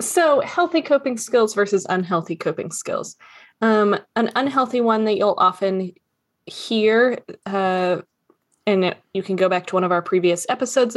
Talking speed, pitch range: 155 wpm, 180-225 Hz